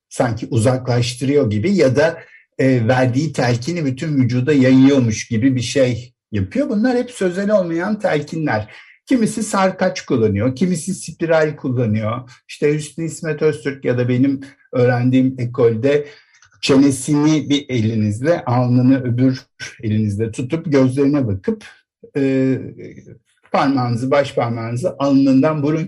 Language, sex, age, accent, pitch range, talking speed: Turkish, male, 60-79, native, 120-160 Hz, 110 wpm